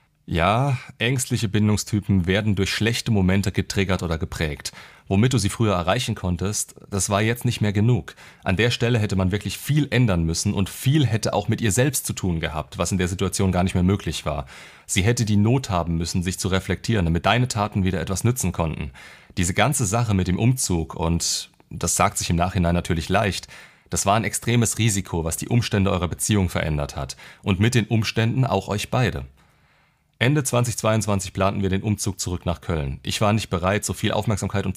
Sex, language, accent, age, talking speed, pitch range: male, German, German, 30-49, 200 wpm, 90-110 Hz